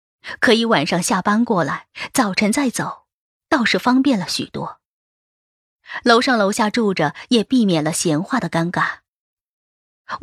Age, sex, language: 20-39, female, Chinese